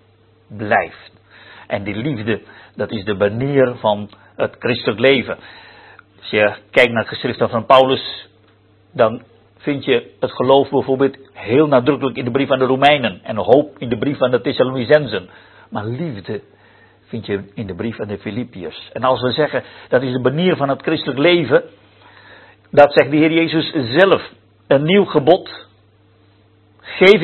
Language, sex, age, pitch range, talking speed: Dutch, male, 50-69, 110-160 Hz, 165 wpm